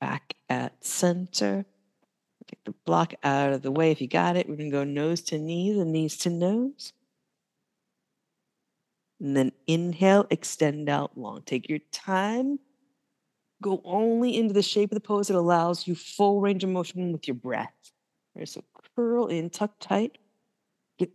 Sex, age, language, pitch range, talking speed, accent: female, 50-69, English, 165-220 Hz, 165 wpm, American